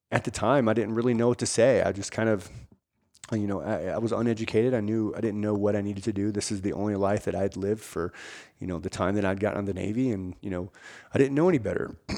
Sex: male